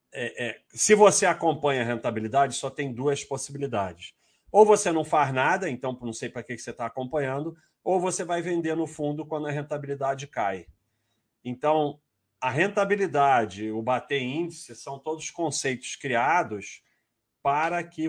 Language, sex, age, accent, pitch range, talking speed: Portuguese, male, 40-59, Brazilian, 120-160 Hz, 145 wpm